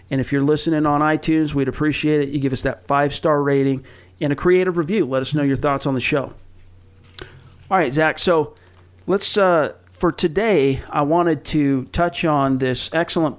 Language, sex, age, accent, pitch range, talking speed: English, male, 40-59, American, 135-160 Hz, 195 wpm